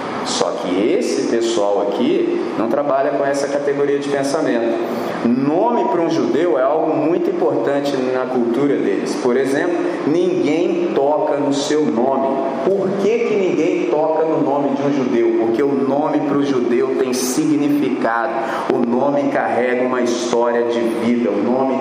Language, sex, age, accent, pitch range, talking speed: Portuguese, male, 40-59, Brazilian, 130-180 Hz, 155 wpm